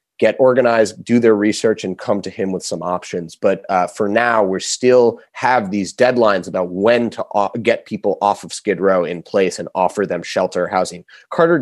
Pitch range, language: 100-135 Hz, English